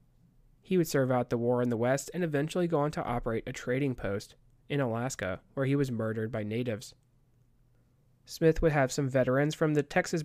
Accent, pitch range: American, 120-140 Hz